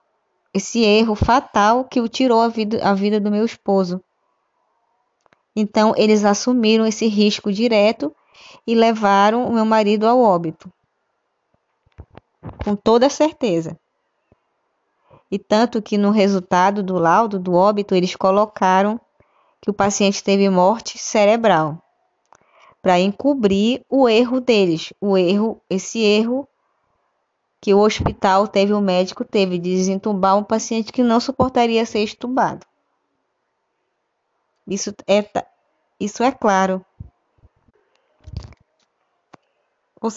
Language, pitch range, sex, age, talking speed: Portuguese, 195-225 Hz, female, 20-39, 110 wpm